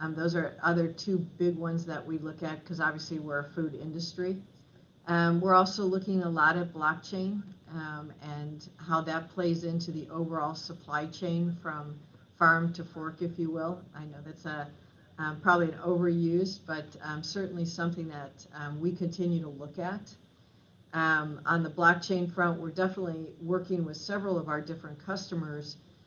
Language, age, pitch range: English, 50-69, 155-175 Hz